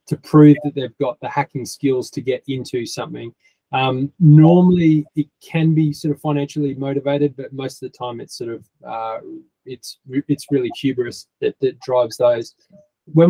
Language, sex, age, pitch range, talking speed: English, male, 20-39, 130-150 Hz, 175 wpm